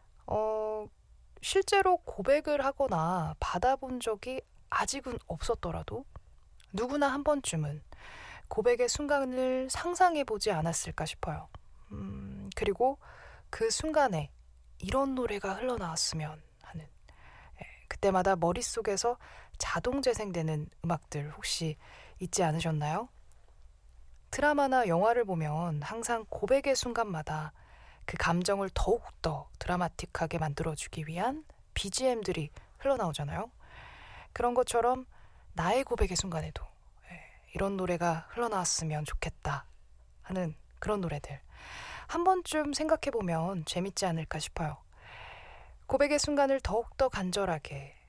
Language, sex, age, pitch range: Korean, female, 20-39, 160-255 Hz